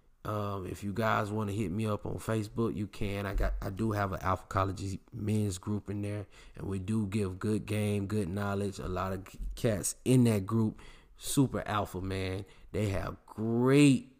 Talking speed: 195 wpm